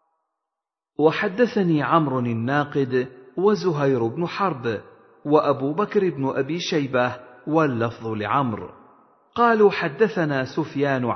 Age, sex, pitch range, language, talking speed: 50-69, male, 120-170 Hz, Arabic, 85 wpm